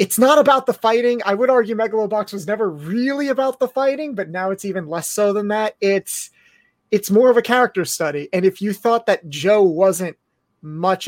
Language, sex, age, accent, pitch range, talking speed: English, male, 30-49, American, 165-200 Hz, 205 wpm